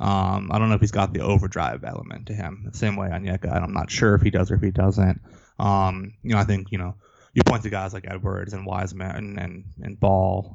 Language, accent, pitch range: English, American, 95-105 Hz